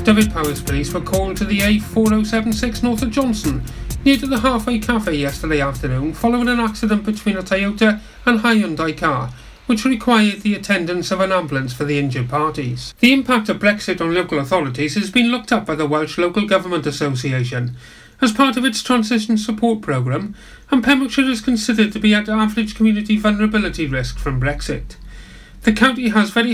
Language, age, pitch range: English, 40-59, 155-220 Hz